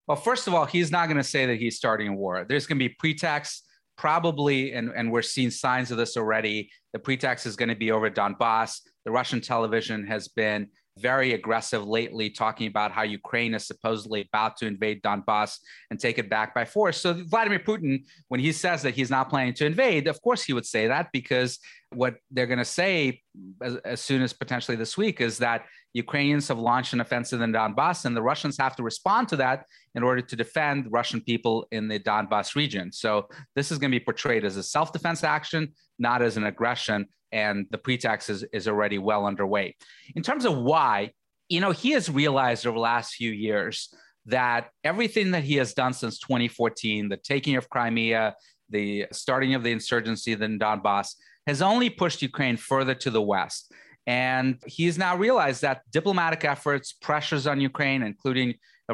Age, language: 30-49, English